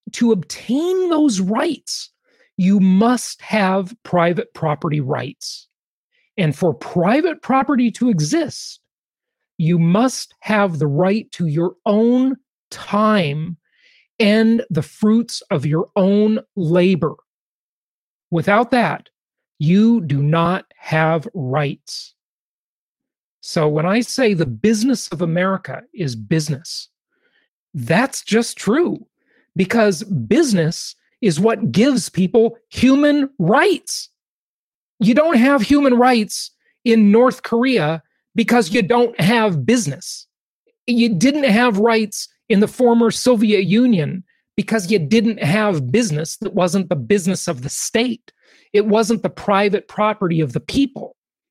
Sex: male